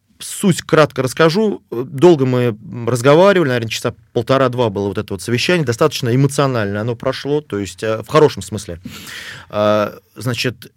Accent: native